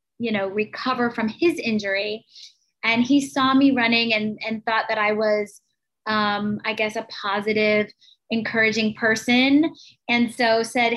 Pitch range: 215-245 Hz